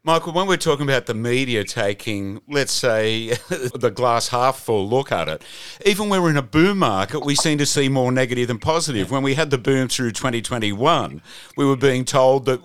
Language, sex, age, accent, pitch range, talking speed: English, male, 50-69, Australian, 105-130 Hz, 210 wpm